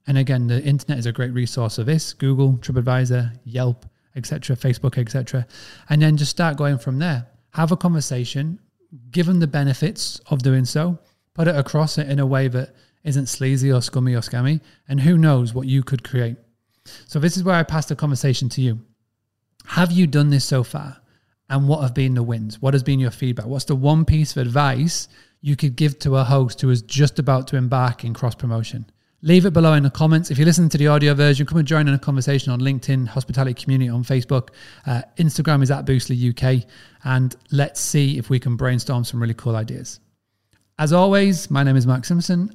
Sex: male